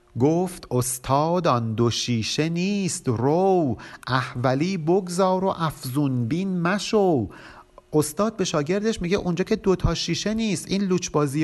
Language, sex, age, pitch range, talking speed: Persian, male, 50-69, 120-185 Hz, 130 wpm